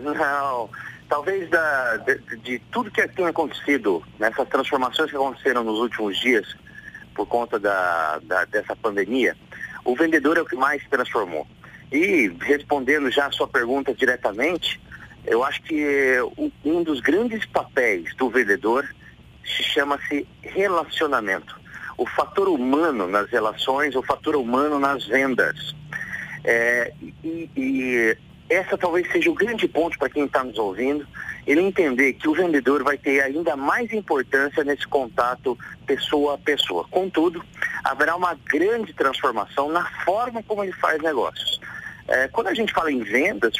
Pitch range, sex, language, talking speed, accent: 135-195 Hz, male, Portuguese, 145 wpm, Brazilian